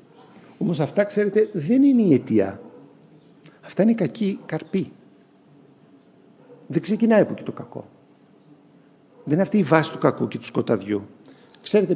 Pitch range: 125-185 Hz